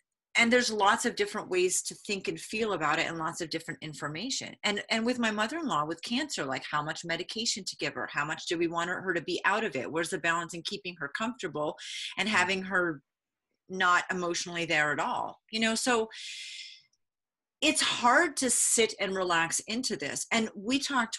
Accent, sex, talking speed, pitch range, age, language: American, female, 200 wpm, 170-235 Hz, 30-49, English